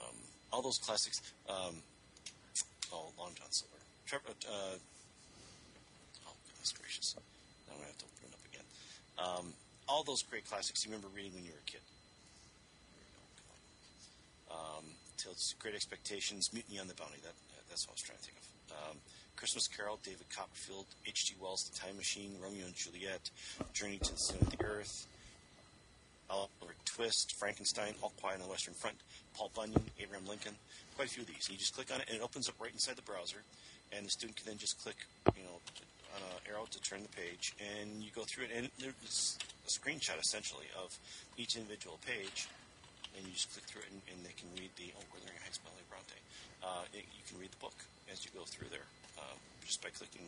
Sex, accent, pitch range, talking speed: male, American, 90-105 Hz, 195 wpm